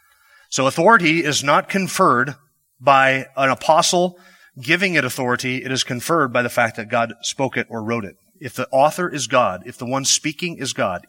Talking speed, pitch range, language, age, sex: 190 wpm, 120-155 Hz, English, 30-49, male